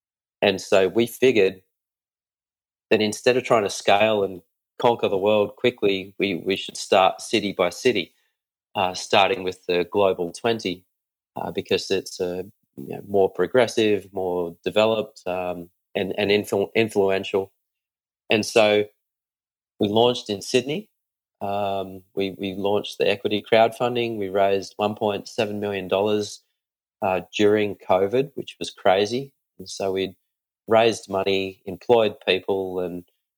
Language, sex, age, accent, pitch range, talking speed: English, male, 30-49, Australian, 95-105 Hz, 140 wpm